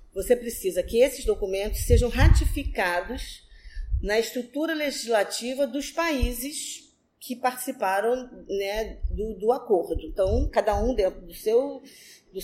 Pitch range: 200-280 Hz